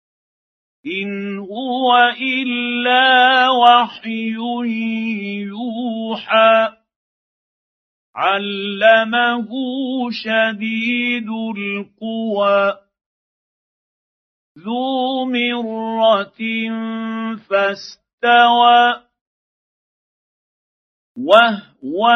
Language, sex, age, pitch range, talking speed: Arabic, male, 50-69, 220-240 Hz, 30 wpm